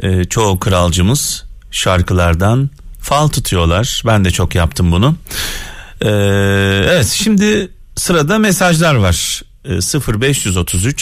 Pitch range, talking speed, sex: 90-120 Hz, 85 wpm, male